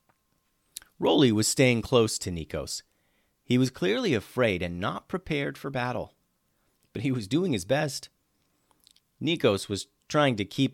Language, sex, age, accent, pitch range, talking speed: English, male, 40-59, American, 95-135 Hz, 145 wpm